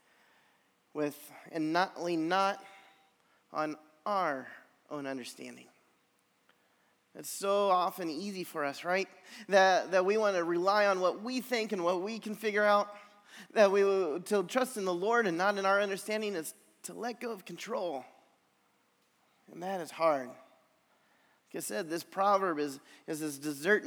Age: 20-39